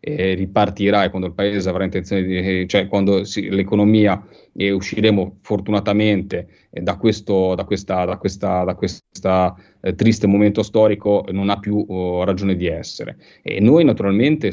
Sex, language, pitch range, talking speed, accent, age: male, Italian, 95-105 Hz, 160 wpm, native, 30-49